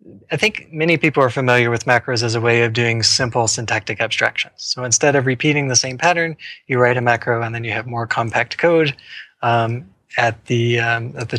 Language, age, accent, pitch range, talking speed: English, 20-39, American, 120-140 Hz, 210 wpm